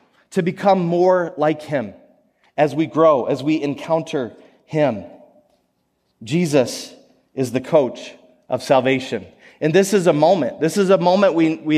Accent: American